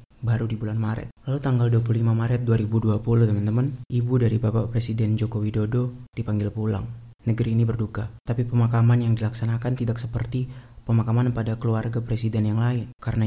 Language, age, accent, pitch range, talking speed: Indonesian, 20-39, native, 110-120 Hz, 155 wpm